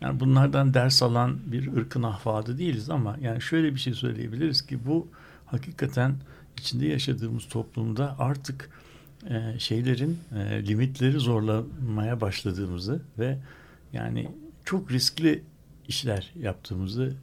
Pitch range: 110-135 Hz